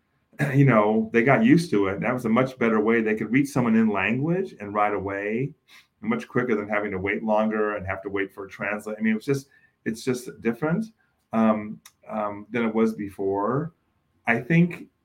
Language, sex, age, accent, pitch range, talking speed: English, male, 30-49, American, 100-125 Hz, 200 wpm